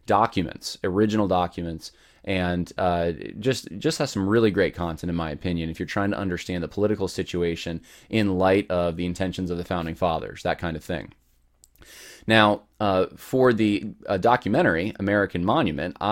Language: English